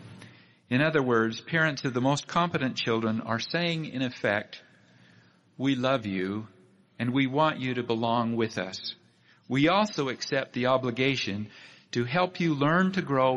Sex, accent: male, American